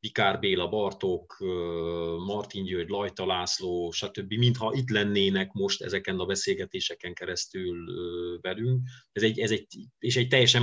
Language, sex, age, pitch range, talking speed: Hungarian, male, 30-49, 90-125 Hz, 135 wpm